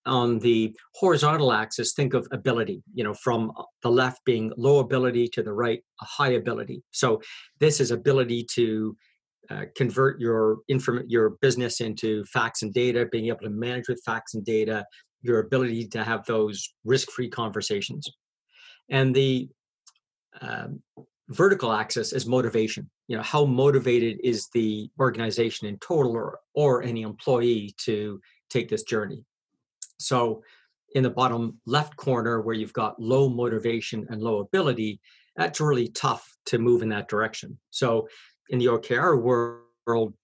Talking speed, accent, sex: 150 wpm, American, male